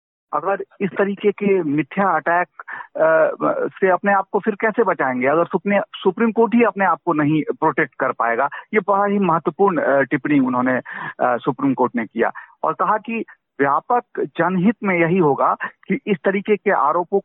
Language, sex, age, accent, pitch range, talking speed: Hindi, male, 50-69, native, 145-200 Hz, 165 wpm